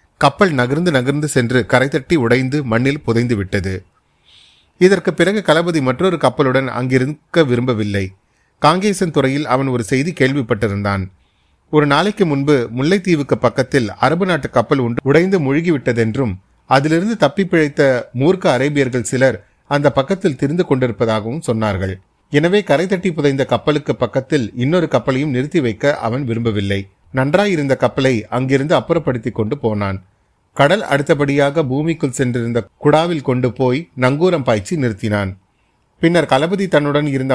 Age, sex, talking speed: 30-49, male, 115 wpm